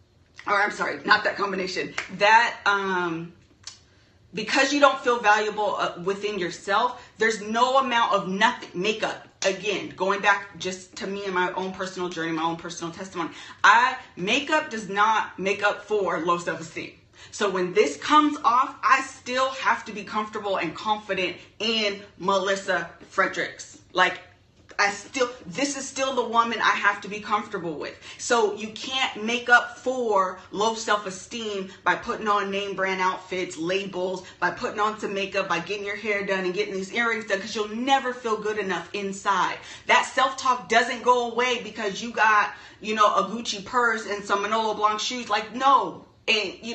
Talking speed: 175 wpm